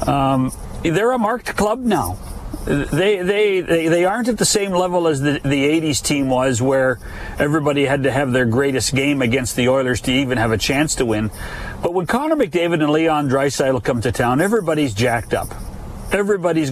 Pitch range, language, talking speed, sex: 135-190 Hz, English, 190 wpm, male